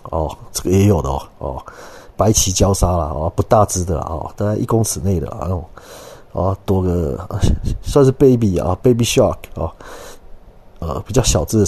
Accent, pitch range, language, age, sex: native, 95-125 Hz, Chinese, 30-49, male